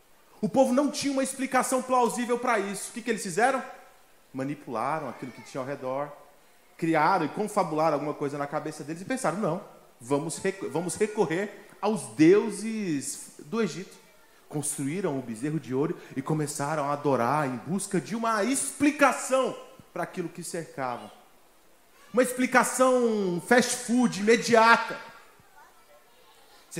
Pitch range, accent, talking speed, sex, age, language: 145-210 Hz, Brazilian, 135 wpm, male, 30-49, Portuguese